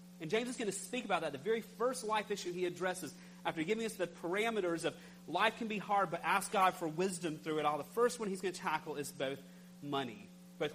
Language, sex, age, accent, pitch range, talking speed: English, male, 40-59, American, 165-200 Hz, 245 wpm